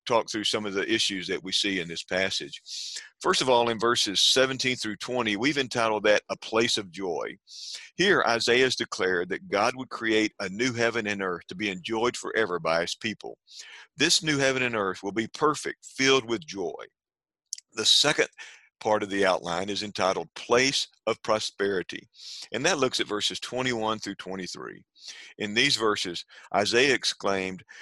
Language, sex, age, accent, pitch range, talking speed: English, male, 50-69, American, 95-120 Hz, 175 wpm